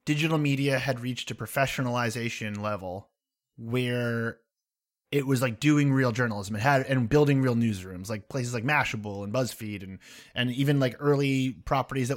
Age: 30-49